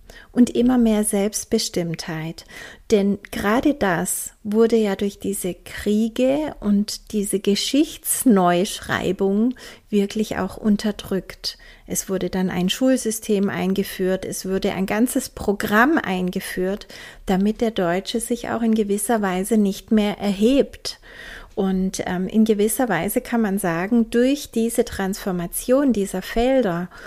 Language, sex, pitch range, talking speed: German, female, 190-230 Hz, 120 wpm